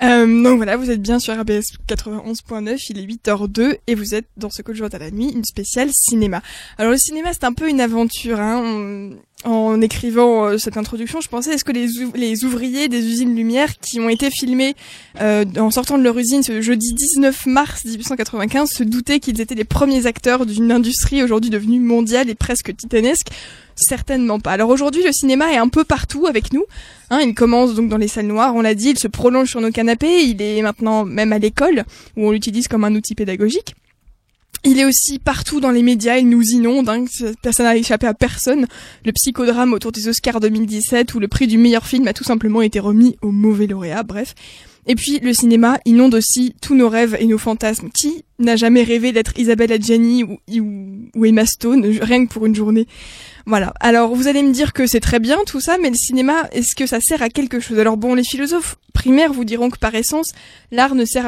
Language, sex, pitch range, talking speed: French, female, 220-260 Hz, 215 wpm